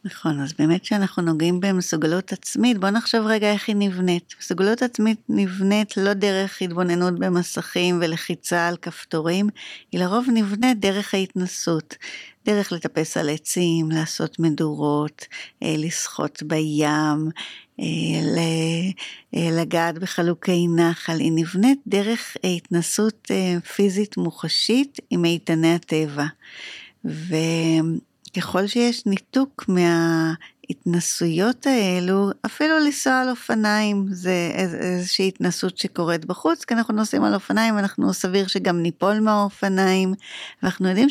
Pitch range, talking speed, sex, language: 165-200 Hz, 110 wpm, female, Hebrew